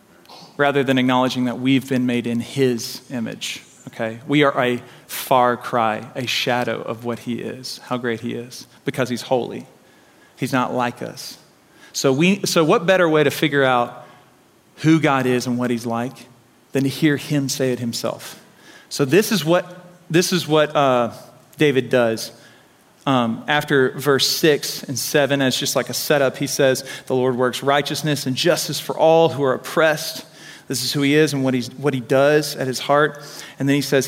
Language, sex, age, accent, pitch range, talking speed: English, male, 40-59, American, 125-155 Hz, 190 wpm